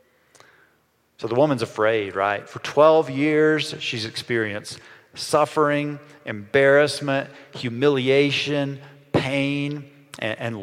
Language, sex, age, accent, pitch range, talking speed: English, male, 40-59, American, 135-175 Hz, 90 wpm